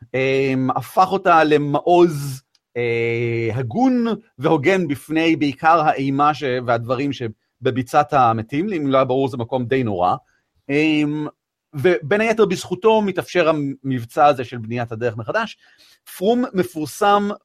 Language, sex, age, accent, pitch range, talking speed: Hebrew, male, 40-59, native, 125-185 Hz, 120 wpm